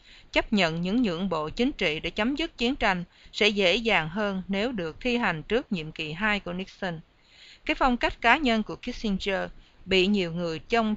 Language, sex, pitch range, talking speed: English, female, 170-225 Hz, 200 wpm